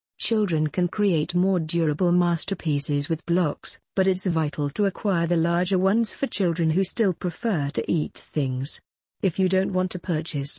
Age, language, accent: 50-69, English, British